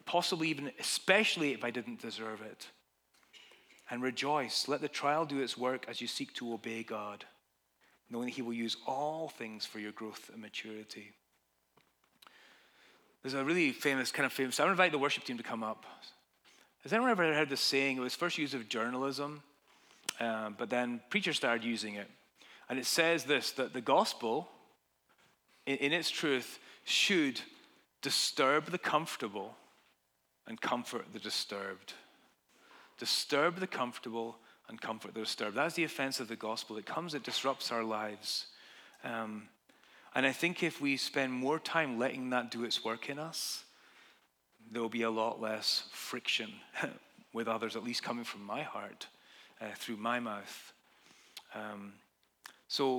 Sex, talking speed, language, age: male, 160 wpm, English, 30-49